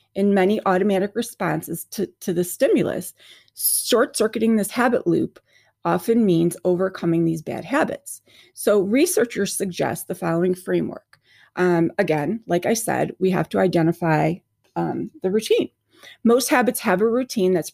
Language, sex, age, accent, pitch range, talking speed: English, female, 30-49, American, 165-220 Hz, 140 wpm